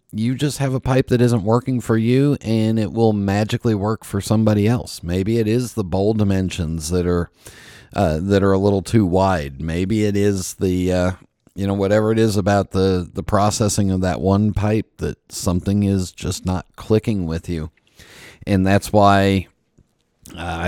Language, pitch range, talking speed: English, 90-110 Hz, 185 wpm